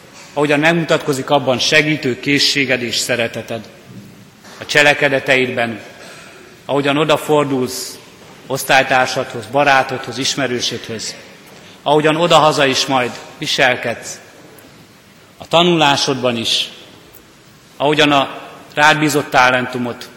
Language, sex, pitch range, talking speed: Hungarian, male, 125-150 Hz, 80 wpm